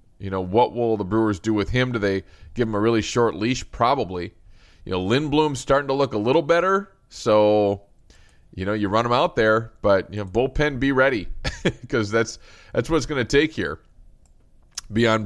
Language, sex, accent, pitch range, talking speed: English, male, American, 100-120 Hz, 200 wpm